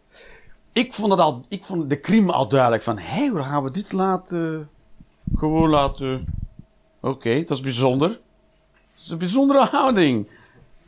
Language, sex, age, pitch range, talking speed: Dutch, male, 50-69, 130-200 Hz, 155 wpm